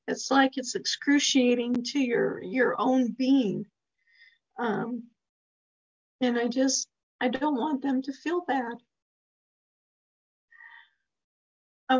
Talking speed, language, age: 105 wpm, English, 50-69